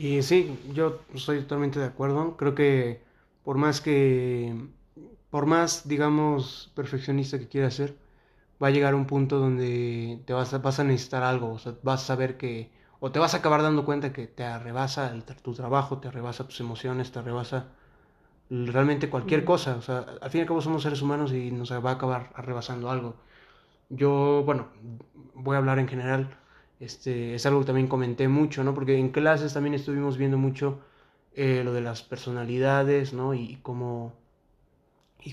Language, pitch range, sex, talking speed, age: English, 125-140 Hz, male, 180 wpm, 20-39